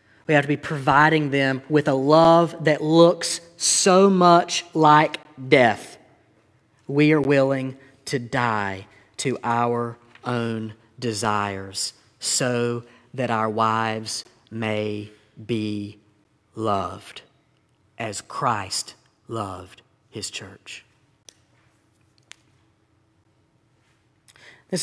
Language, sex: English, male